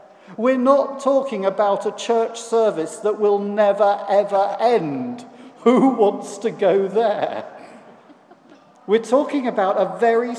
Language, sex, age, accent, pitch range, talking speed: English, male, 50-69, British, 185-225 Hz, 125 wpm